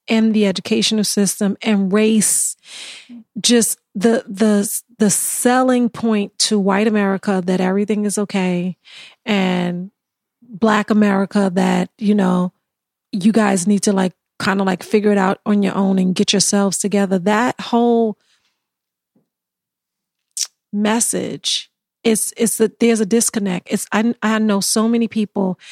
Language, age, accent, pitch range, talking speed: English, 40-59, American, 195-230 Hz, 140 wpm